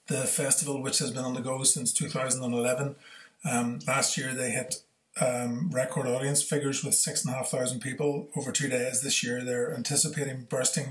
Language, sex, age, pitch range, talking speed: English, male, 30-49, 125-150 Hz, 165 wpm